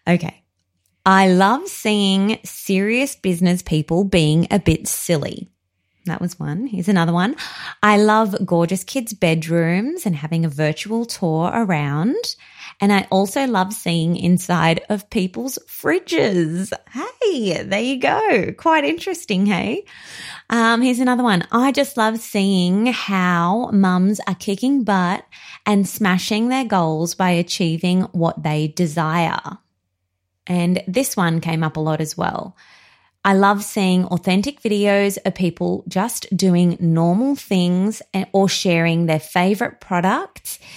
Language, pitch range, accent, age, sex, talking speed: English, 170-230 Hz, Australian, 20-39, female, 135 wpm